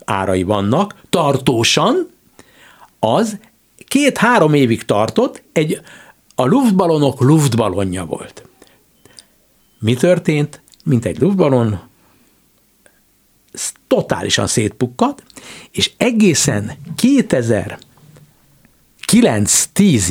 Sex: male